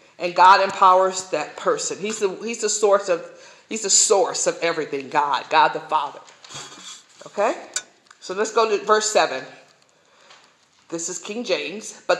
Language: English